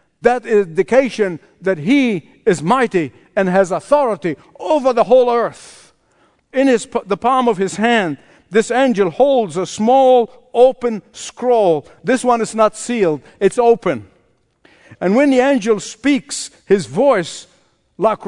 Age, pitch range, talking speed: 50-69, 170-235 Hz, 140 wpm